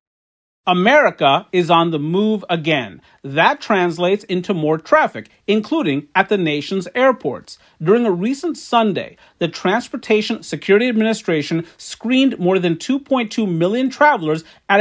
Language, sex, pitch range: English, male, 175-250 Hz